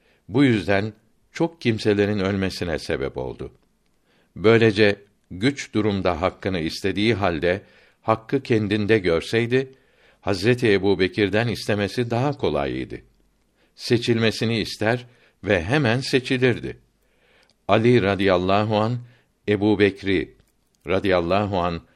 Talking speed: 85 wpm